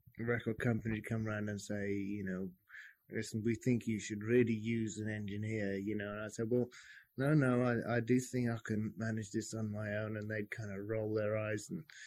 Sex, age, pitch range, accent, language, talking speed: male, 30-49, 110-125 Hz, British, English, 220 wpm